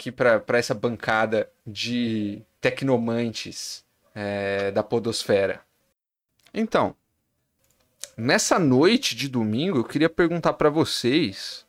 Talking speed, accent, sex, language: 90 wpm, Brazilian, male, Portuguese